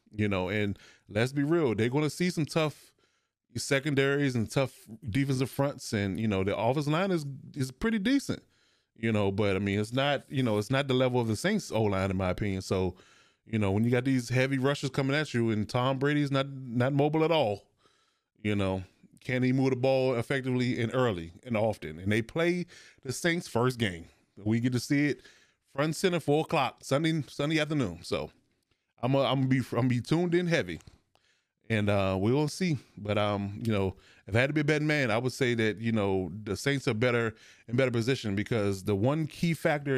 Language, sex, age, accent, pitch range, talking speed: English, male, 20-39, American, 105-140 Hz, 215 wpm